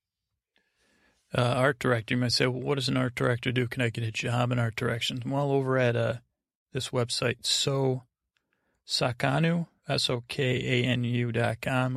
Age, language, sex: 30-49, English, male